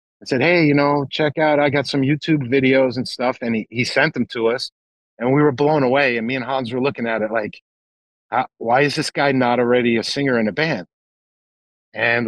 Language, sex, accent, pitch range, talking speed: English, male, American, 115-145 Hz, 230 wpm